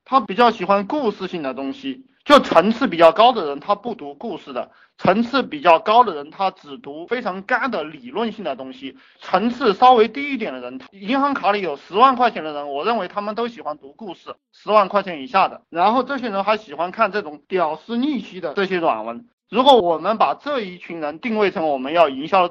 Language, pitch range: Chinese, 165-235 Hz